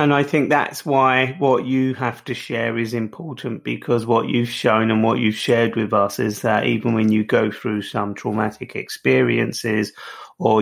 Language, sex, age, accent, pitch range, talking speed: English, male, 30-49, British, 110-125 Hz, 185 wpm